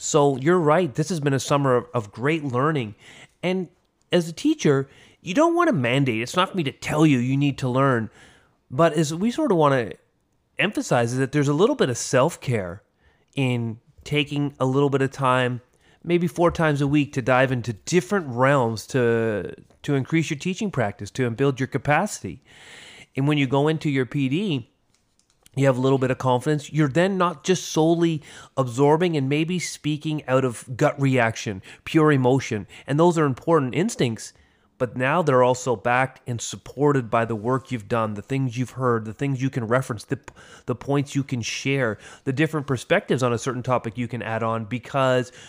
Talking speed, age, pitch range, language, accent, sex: 195 wpm, 30-49, 120-150 Hz, English, American, male